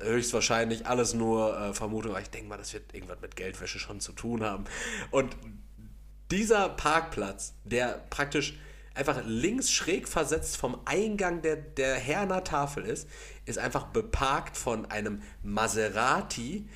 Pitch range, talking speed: 105-150 Hz, 145 wpm